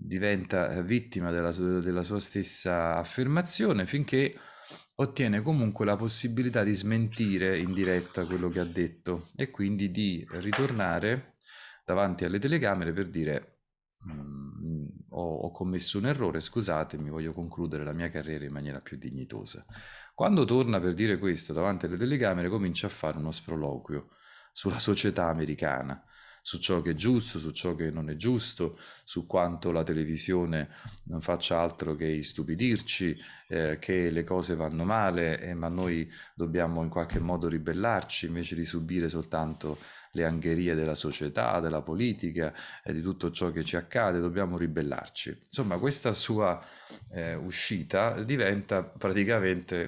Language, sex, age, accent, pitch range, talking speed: Italian, male, 30-49, native, 80-100 Hz, 145 wpm